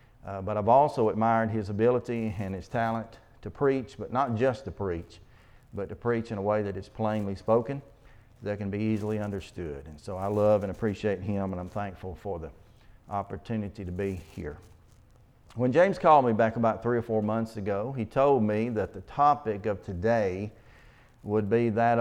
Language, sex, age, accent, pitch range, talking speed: English, male, 40-59, American, 105-125 Hz, 190 wpm